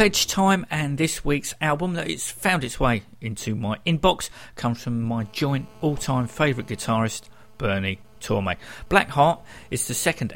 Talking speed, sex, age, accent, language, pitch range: 160 wpm, male, 50-69, British, English, 110-145 Hz